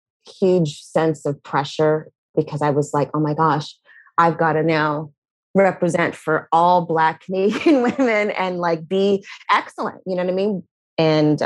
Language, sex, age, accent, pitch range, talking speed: English, female, 30-49, American, 150-180 Hz, 160 wpm